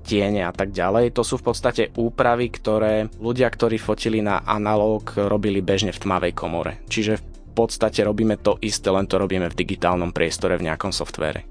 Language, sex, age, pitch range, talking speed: Slovak, male, 20-39, 90-110 Hz, 180 wpm